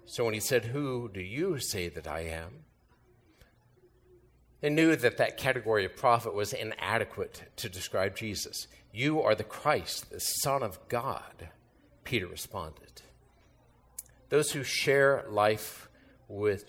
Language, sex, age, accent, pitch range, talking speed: English, male, 50-69, American, 100-120 Hz, 135 wpm